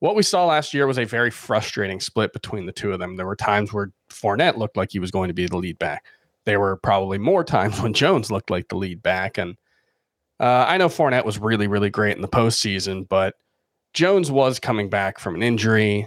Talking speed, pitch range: 230 wpm, 100-125 Hz